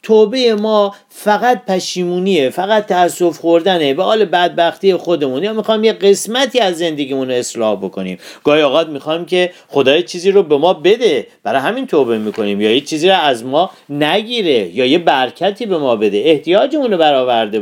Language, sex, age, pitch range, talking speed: Persian, male, 50-69, 165-240 Hz, 170 wpm